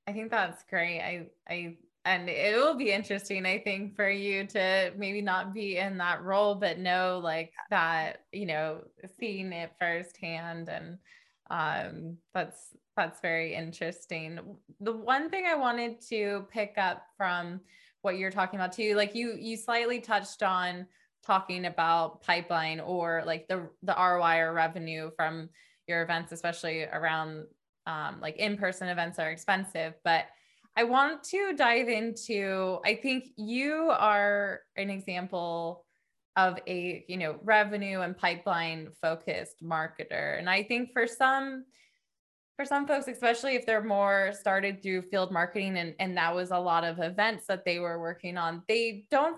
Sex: female